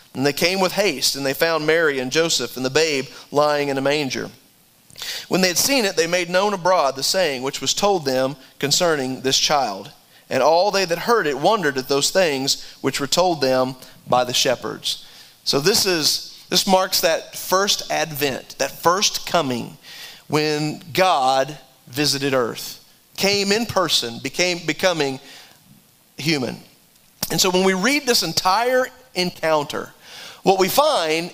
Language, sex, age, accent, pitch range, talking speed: English, male, 40-59, American, 145-205 Hz, 165 wpm